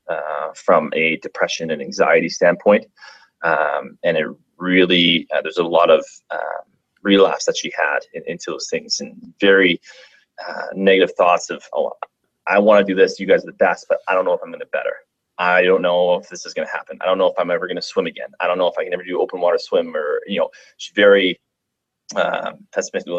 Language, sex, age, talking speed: English, male, 20-39, 230 wpm